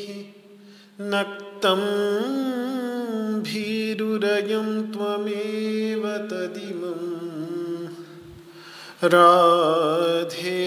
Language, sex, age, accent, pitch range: Hindi, male, 40-59, native, 180-230 Hz